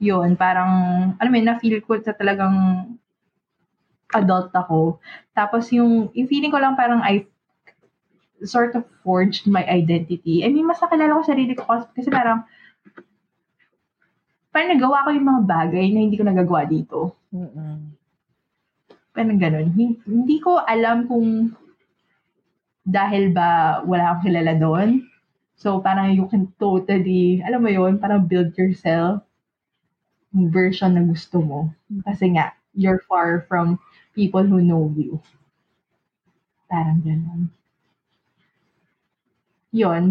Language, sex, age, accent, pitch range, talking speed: Filipino, female, 20-39, native, 175-225 Hz, 130 wpm